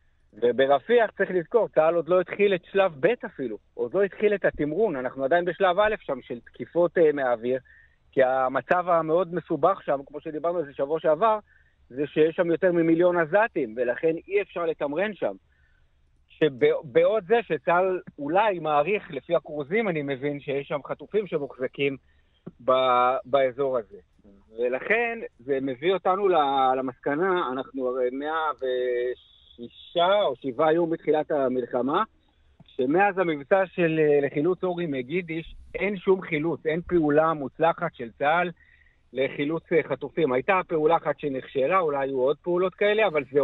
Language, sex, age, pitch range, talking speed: Hebrew, male, 50-69, 135-180 Hz, 140 wpm